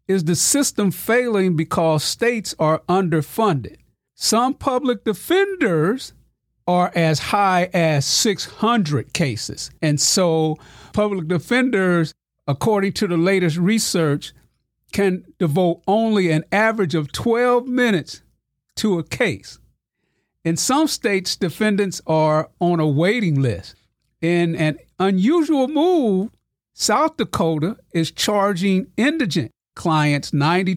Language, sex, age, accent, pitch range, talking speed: English, male, 50-69, American, 155-215 Hz, 110 wpm